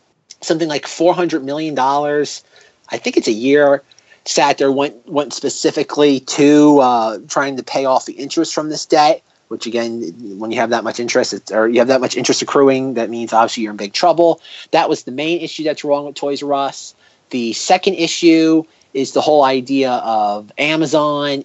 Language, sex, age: English, male, 30-49